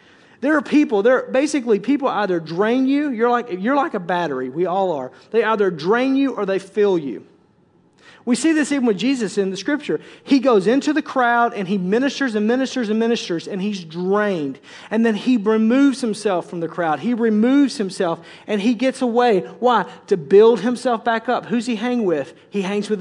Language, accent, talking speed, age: English, American, 205 wpm, 40-59